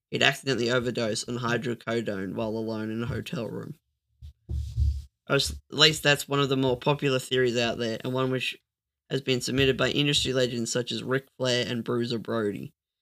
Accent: Australian